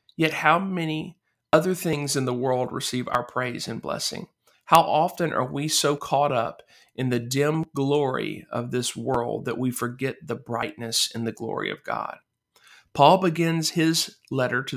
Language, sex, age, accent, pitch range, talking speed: English, male, 40-59, American, 120-150 Hz, 170 wpm